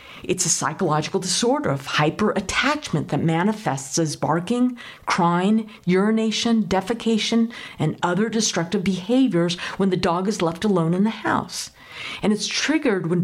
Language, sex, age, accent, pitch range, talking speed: English, female, 50-69, American, 170-215 Hz, 135 wpm